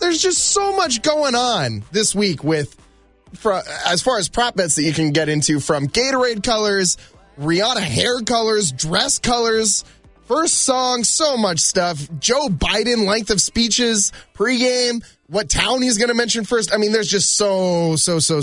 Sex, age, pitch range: male, 20-39, 160-230 Hz